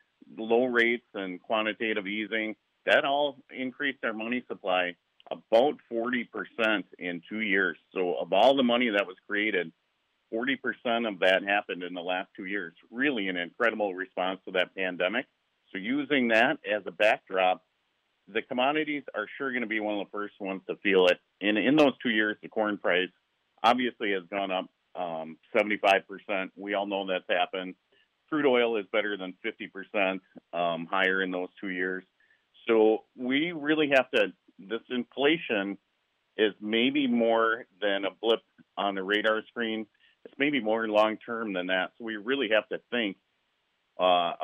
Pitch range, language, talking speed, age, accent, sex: 95-115 Hz, English, 165 wpm, 50-69, American, male